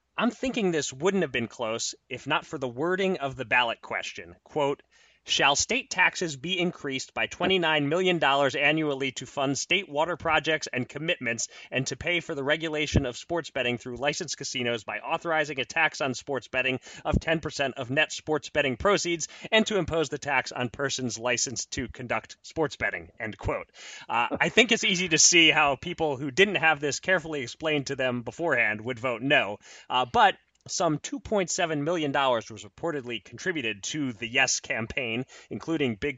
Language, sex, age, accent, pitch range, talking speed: English, male, 30-49, American, 125-165 Hz, 180 wpm